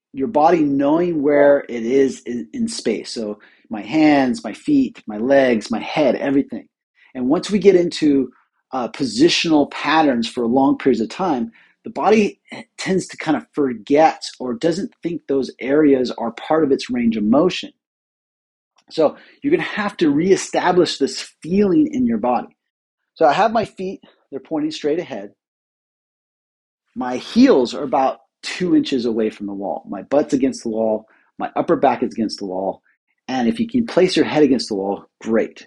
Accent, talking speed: American, 175 wpm